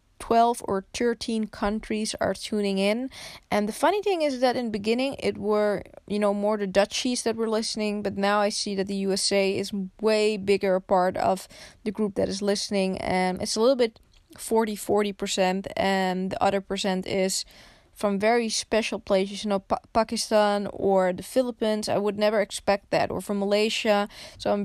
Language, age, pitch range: English, 20-39, 190-215 Hz